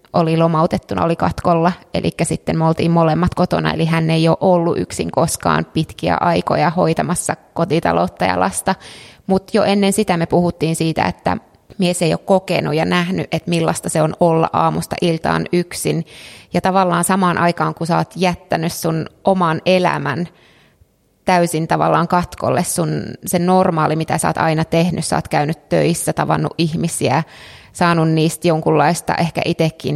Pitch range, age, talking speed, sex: 155-180 Hz, 20-39, 155 wpm, female